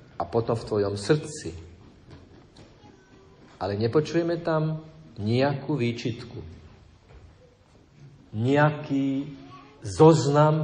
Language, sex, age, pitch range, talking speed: Slovak, male, 50-69, 115-165 Hz, 70 wpm